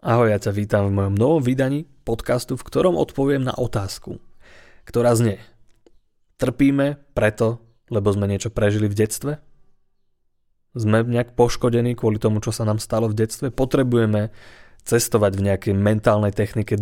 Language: Slovak